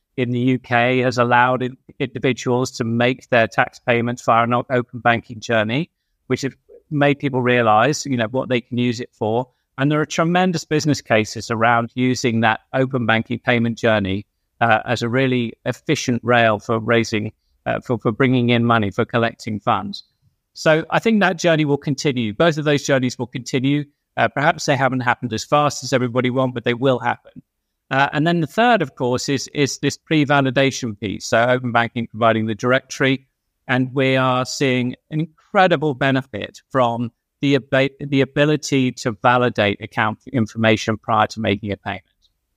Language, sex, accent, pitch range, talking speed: English, male, British, 115-135 Hz, 175 wpm